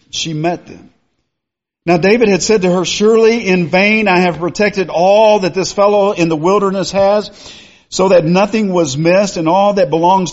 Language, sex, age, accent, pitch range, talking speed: English, male, 50-69, American, 125-180 Hz, 185 wpm